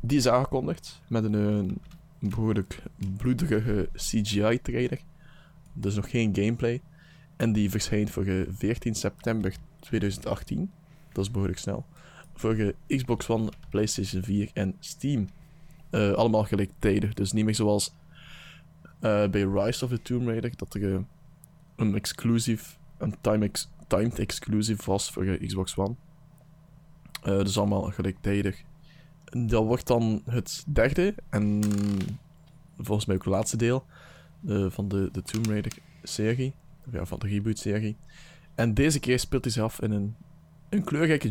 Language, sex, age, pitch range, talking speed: Dutch, male, 20-39, 100-150 Hz, 145 wpm